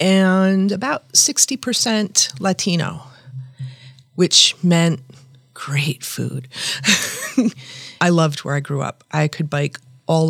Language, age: English, 40-59